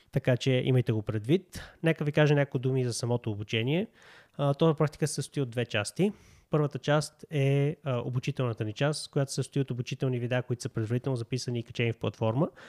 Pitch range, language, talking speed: 120-145 Hz, Bulgarian, 190 wpm